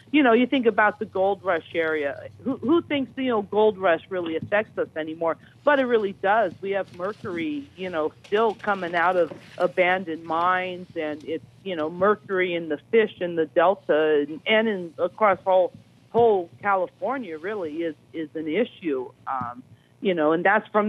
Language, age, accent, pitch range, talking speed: English, 50-69, American, 160-210 Hz, 180 wpm